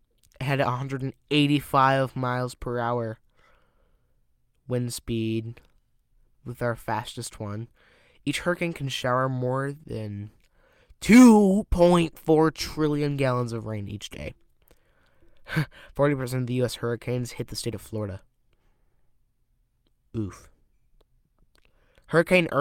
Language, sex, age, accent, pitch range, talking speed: English, male, 20-39, American, 115-140 Hz, 95 wpm